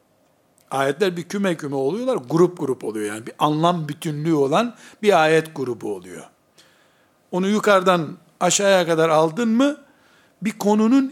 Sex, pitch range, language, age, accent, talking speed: male, 160-215 Hz, Turkish, 60-79, native, 135 wpm